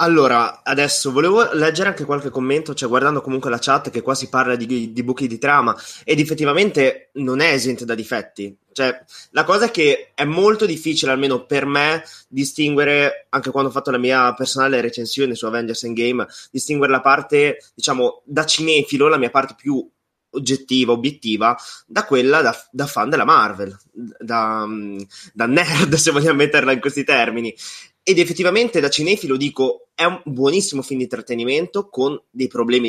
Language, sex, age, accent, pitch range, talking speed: Italian, male, 20-39, native, 120-150 Hz, 170 wpm